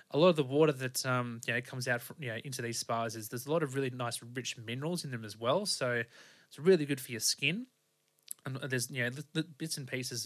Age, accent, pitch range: 20-39, Australian, 120-140 Hz